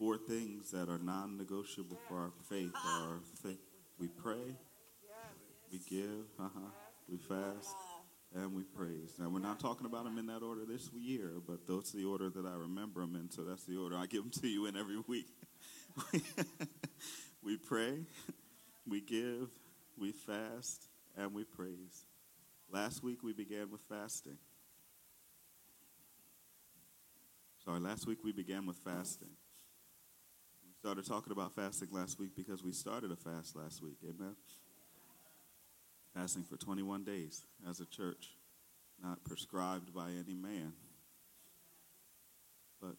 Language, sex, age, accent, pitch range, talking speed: English, male, 40-59, American, 90-105 Hz, 140 wpm